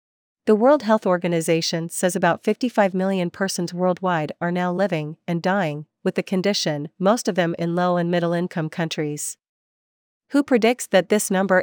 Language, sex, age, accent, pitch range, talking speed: English, female, 40-59, American, 170-200 Hz, 160 wpm